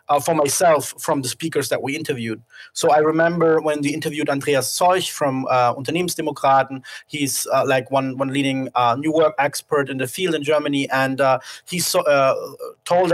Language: English